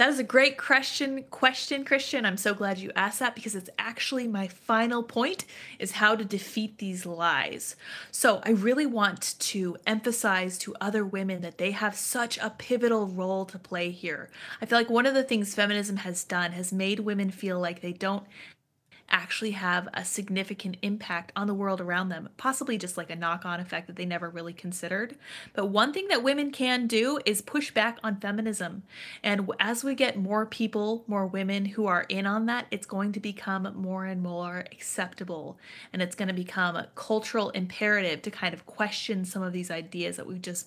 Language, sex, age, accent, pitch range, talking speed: English, female, 30-49, American, 185-230 Hz, 200 wpm